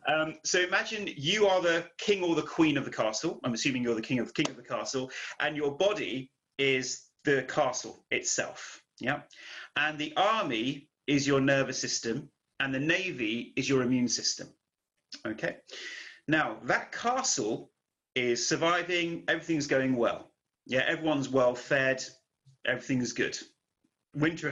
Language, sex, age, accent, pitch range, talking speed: English, male, 30-49, British, 125-160 Hz, 150 wpm